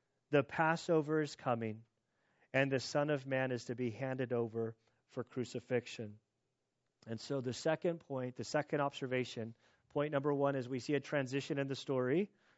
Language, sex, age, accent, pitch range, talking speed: English, male, 40-59, American, 125-155 Hz, 165 wpm